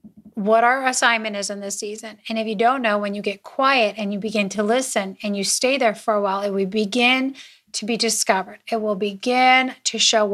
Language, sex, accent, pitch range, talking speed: English, female, American, 215-255 Hz, 225 wpm